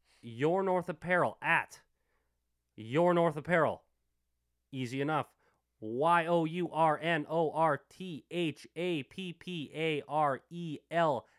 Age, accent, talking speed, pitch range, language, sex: 30-49, American, 130 wpm, 130-175 Hz, English, male